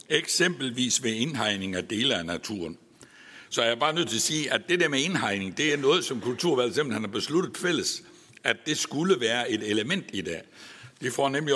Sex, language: male, Danish